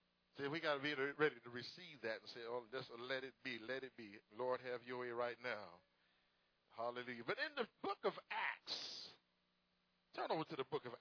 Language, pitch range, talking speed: English, 125-205 Hz, 205 wpm